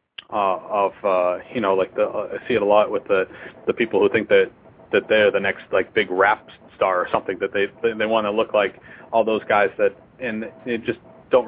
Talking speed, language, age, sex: 235 wpm, English, 30-49, male